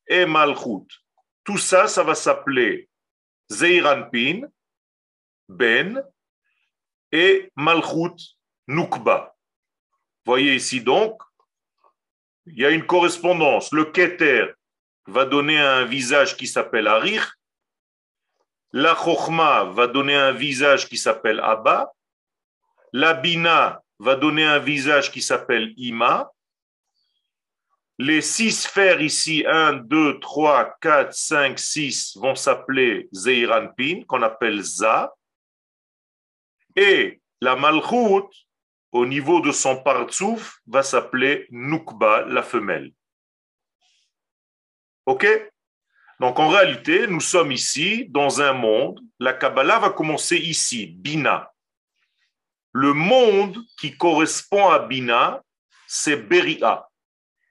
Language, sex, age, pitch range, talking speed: French, male, 50-69, 135-225 Hz, 105 wpm